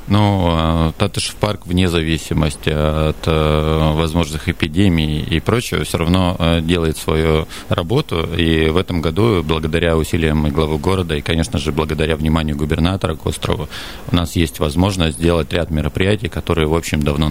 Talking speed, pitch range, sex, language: 150 wpm, 80-90 Hz, male, Russian